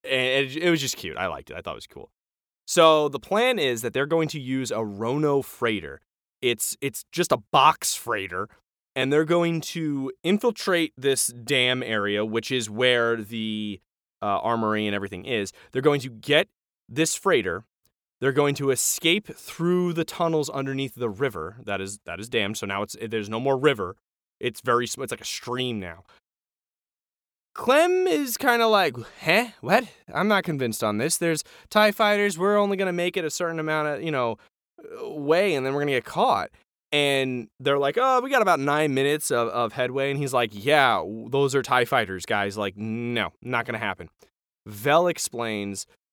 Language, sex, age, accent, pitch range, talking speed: English, male, 20-39, American, 115-160 Hz, 190 wpm